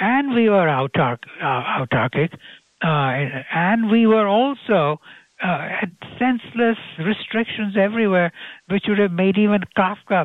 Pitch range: 135-190 Hz